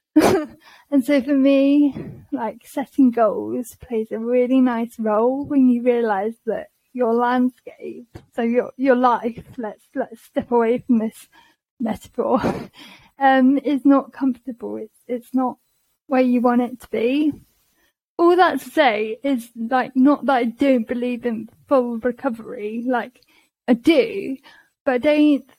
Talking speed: 145 wpm